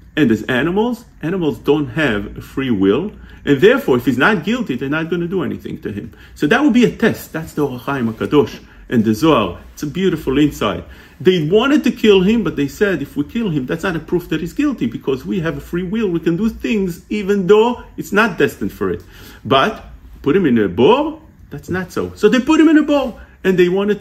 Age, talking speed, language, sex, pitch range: 40-59, 235 wpm, English, male, 160-240 Hz